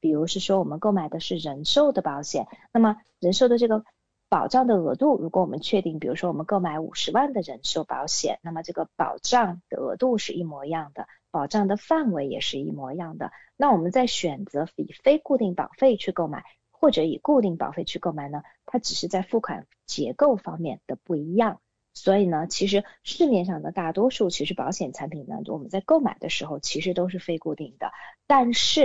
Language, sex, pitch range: English, female, 165-235 Hz